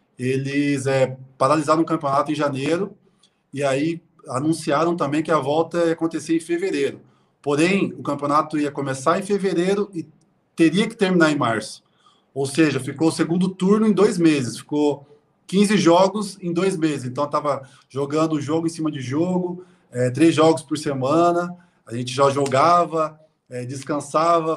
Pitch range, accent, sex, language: 135-160 Hz, Brazilian, male, Portuguese